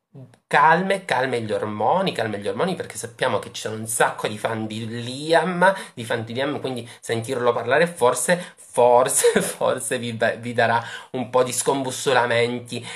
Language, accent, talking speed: Italian, native, 155 wpm